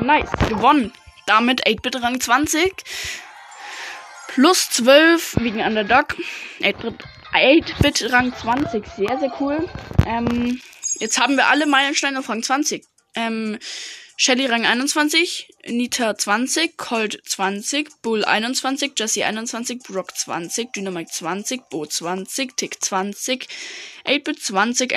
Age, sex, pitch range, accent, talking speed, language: 10-29, female, 215-270 Hz, German, 110 wpm, German